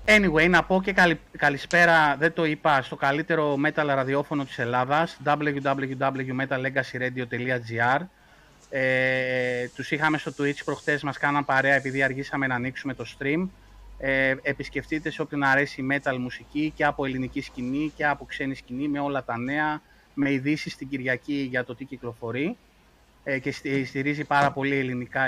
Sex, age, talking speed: male, 30-49, 155 wpm